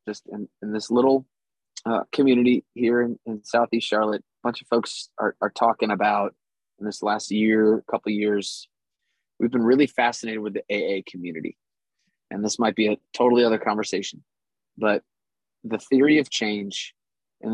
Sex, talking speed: male, 170 wpm